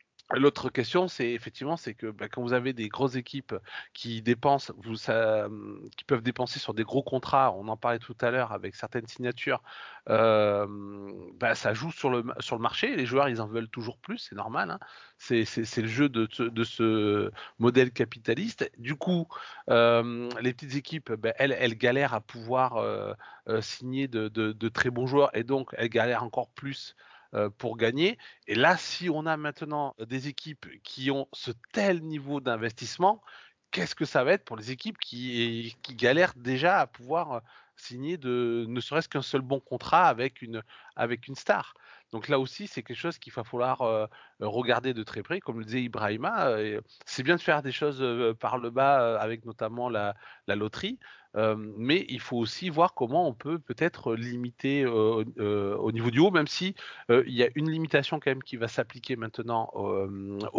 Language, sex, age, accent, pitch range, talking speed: French, male, 30-49, French, 115-140 Hz, 195 wpm